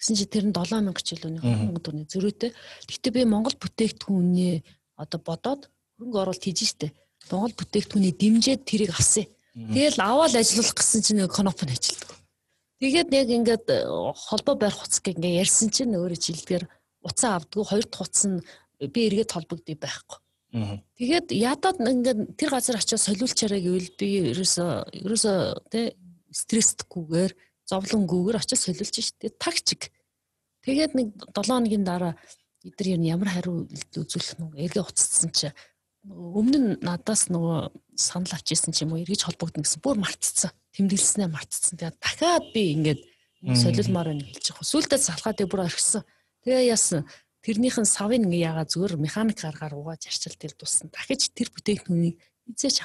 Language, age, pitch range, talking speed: Russian, 40-59, 170-230 Hz, 85 wpm